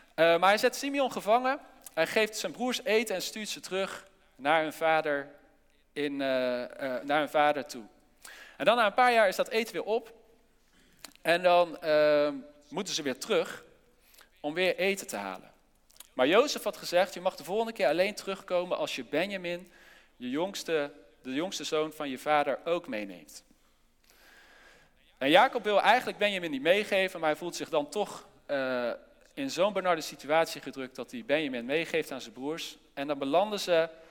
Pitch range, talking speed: 150-230 Hz, 165 wpm